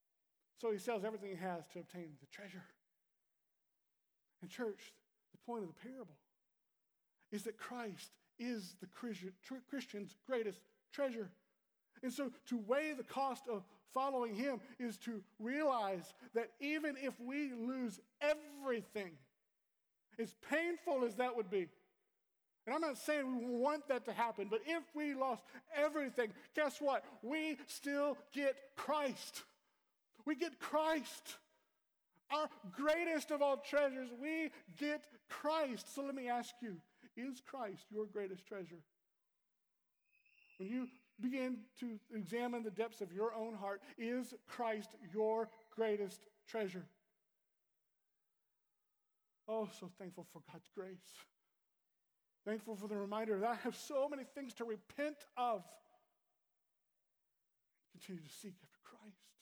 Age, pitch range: 50-69, 210-275 Hz